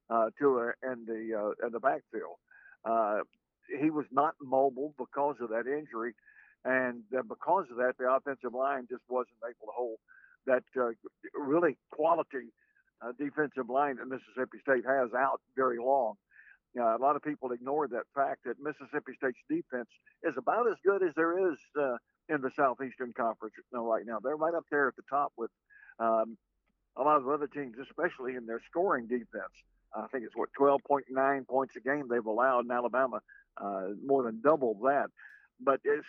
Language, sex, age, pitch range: English, male, 60-79, 125-145 Hz